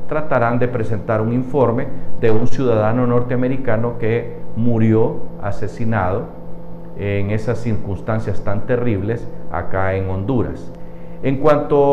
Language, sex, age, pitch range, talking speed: Spanish, male, 50-69, 105-140 Hz, 110 wpm